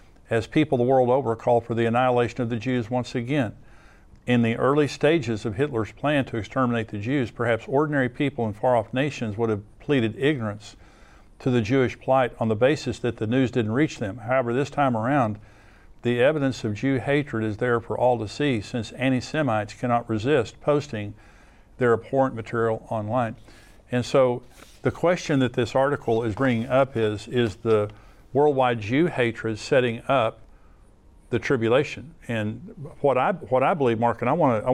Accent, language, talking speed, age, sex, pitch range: American, English, 180 wpm, 50-69, male, 110-135 Hz